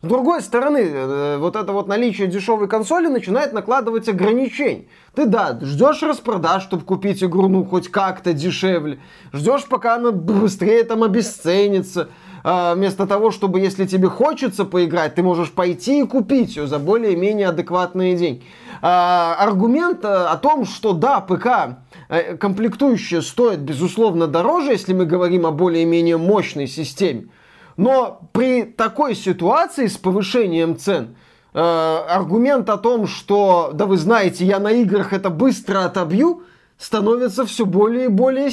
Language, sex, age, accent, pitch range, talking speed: Russian, male, 20-39, native, 180-230 Hz, 140 wpm